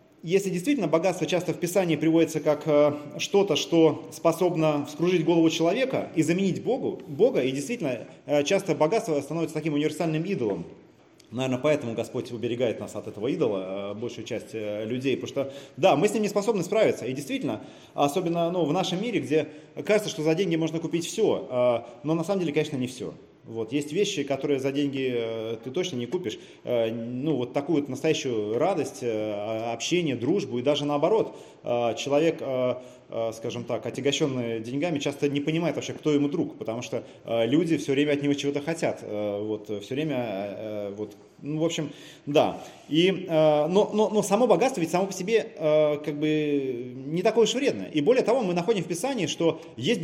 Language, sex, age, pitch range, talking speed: Russian, male, 30-49, 130-170 Hz, 165 wpm